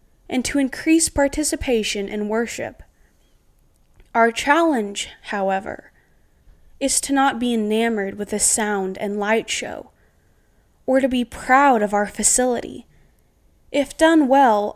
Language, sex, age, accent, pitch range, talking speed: English, female, 10-29, American, 215-255 Hz, 120 wpm